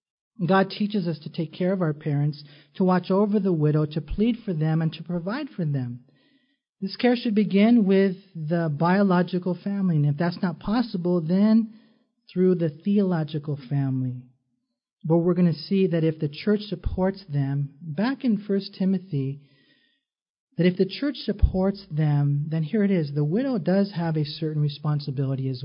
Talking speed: 175 wpm